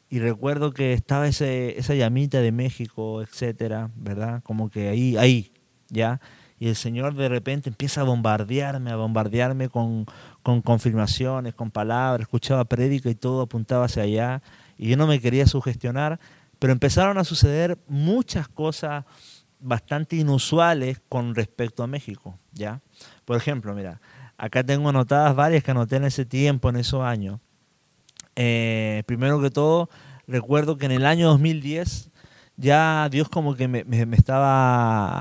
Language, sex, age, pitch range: Spanish, male, 30-49, 115-145 Hz